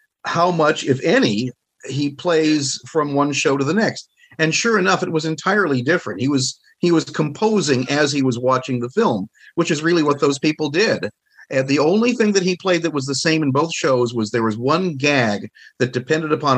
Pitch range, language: 130-170 Hz, English